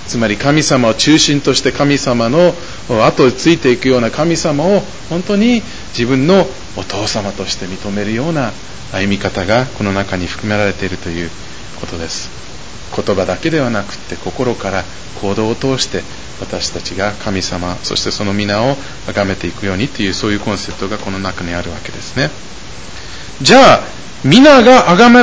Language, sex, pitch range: Japanese, male, 95-150 Hz